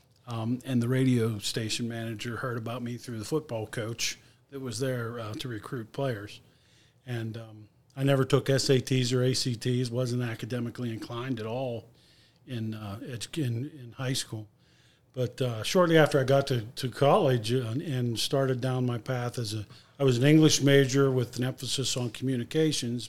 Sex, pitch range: male, 115-135 Hz